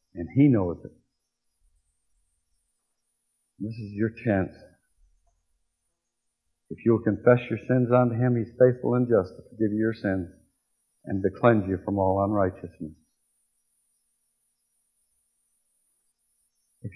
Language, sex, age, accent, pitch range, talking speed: English, male, 60-79, American, 85-120 Hz, 115 wpm